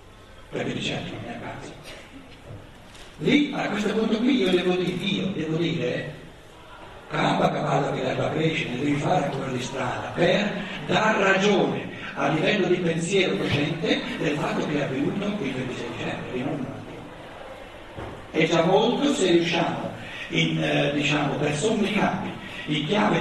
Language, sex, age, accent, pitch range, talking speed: Italian, male, 60-79, native, 160-205 Hz, 120 wpm